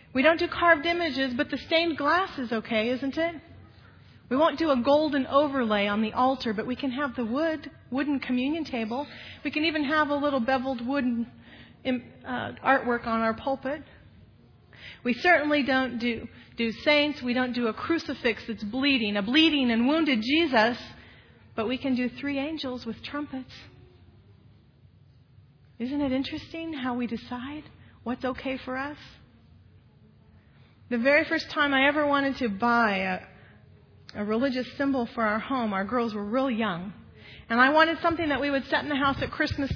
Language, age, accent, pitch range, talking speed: English, 40-59, American, 225-285 Hz, 170 wpm